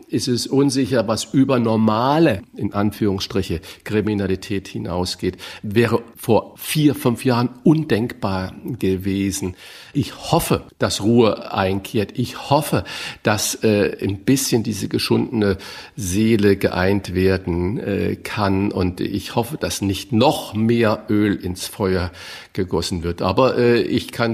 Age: 50-69